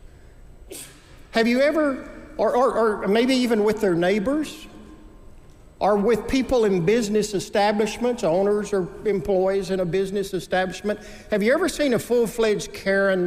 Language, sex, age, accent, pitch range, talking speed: English, male, 60-79, American, 150-210 Hz, 140 wpm